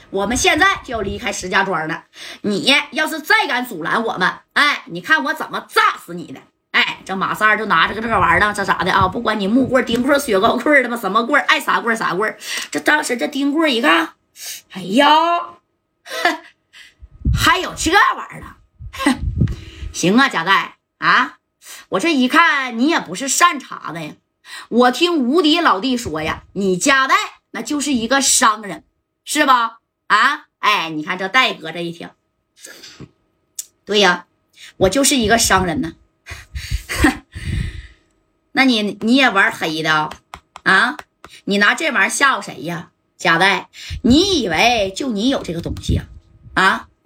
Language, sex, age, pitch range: Chinese, female, 20-39, 190-285 Hz